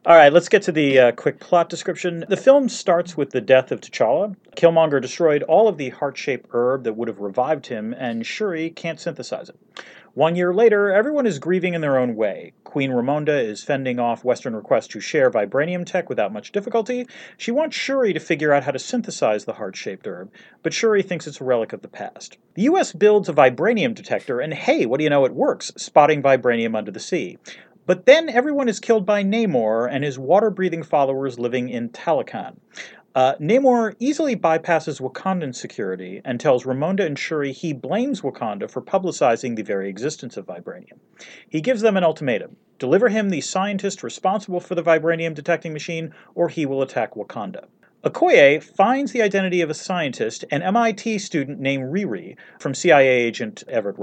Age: 40-59